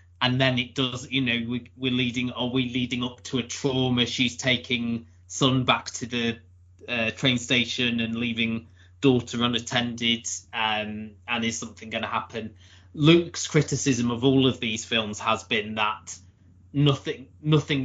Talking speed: 160 wpm